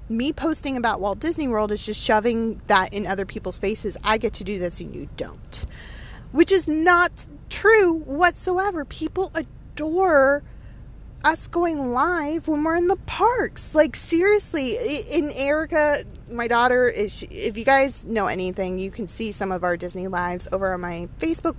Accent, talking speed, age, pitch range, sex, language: American, 170 wpm, 20-39, 215-310 Hz, female, English